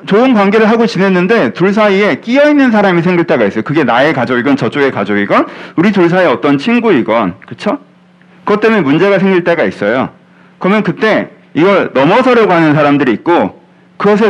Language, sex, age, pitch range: Korean, male, 40-59, 175-220 Hz